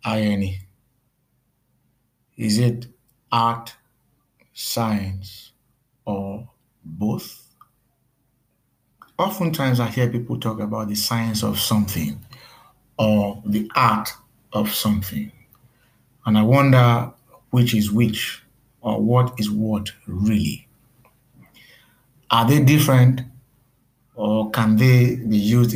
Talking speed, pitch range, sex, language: 95 wpm, 110-130 Hz, male, English